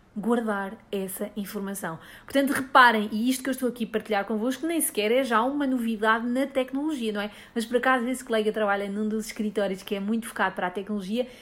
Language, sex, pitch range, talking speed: English, female, 215-260 Hz, 210 wpm